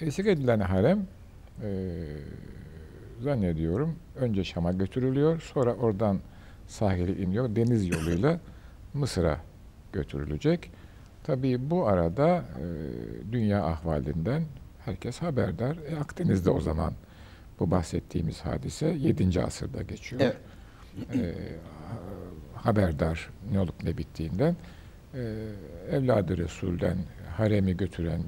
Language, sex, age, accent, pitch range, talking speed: Turkish, male, 60-79, native, 85-115 Hz, 95 wpm